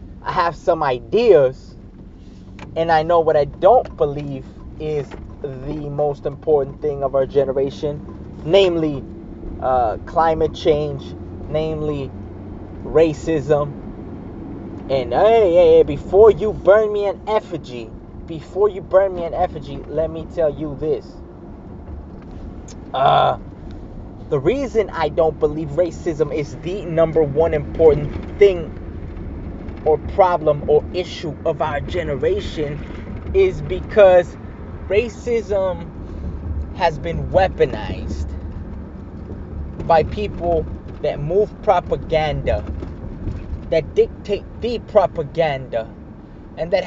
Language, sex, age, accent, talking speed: English, male, 20-39, American, 105 wpm